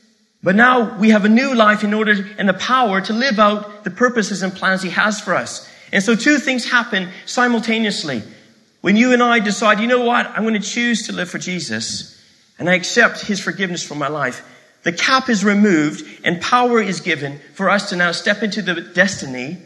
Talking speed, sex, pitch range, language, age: 210 wpm, male, 175-220 Hz, English, 40-59